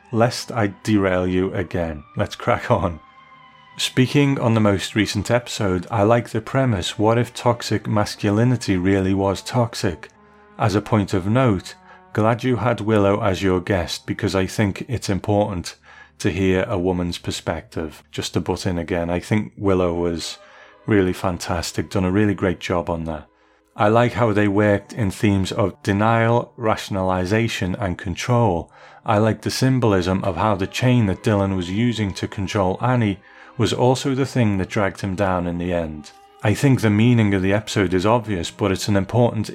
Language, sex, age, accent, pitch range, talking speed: English, male, 40-59, British, 95-120 Hz, 175 wpm